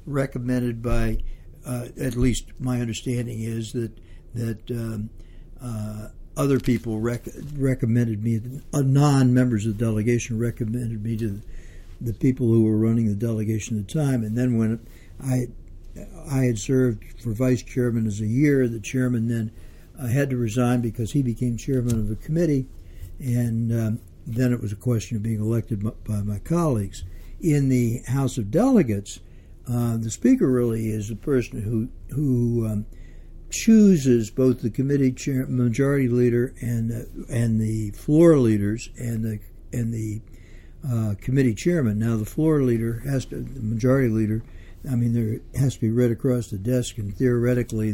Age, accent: 60-79, American